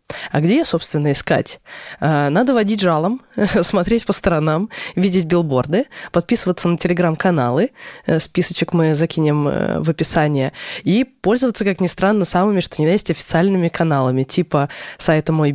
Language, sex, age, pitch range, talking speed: Russian, female, 20-39, 155-195 Hz, 135 wpm